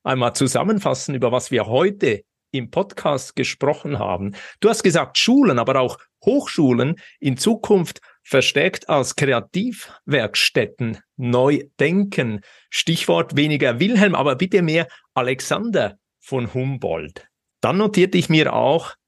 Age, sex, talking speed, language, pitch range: 50-69, male, 120 wpm, German, 130-190 Hz